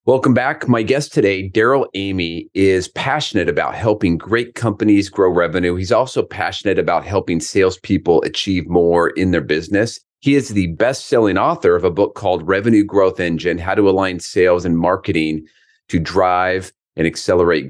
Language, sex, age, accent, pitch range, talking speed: English, male, 30-49, American, 90-115 Hz, 165 wpm